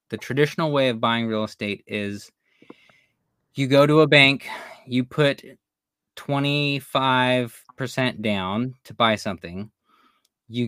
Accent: American